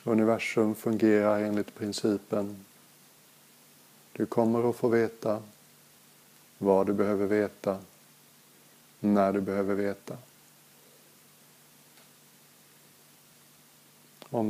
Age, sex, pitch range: 50-69, male, 80-110 Hz